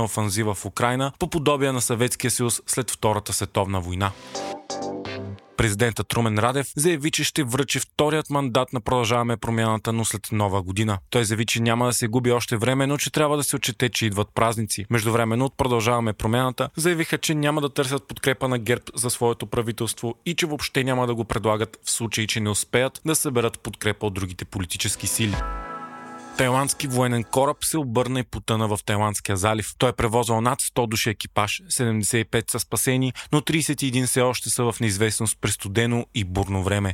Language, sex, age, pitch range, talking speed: Bulgarian, male, 30-49, 110-130 Hz, 180 wpm